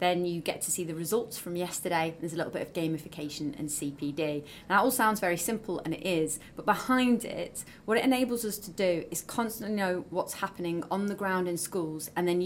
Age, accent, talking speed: 30-49, British, 225 wpm